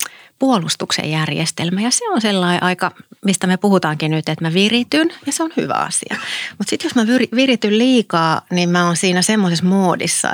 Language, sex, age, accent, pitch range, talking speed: Finnish, female, 30-49, native, 165-195 Hz, 180 wpm